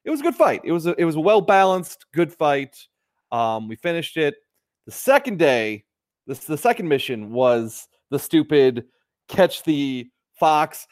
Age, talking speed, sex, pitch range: 30-49, 170 wpm, male, 130-185 Hz